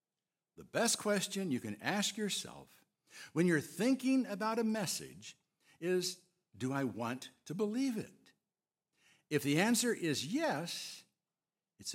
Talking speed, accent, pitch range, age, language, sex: 130 wpm, American, 160-225 Hz, 60-79, English, male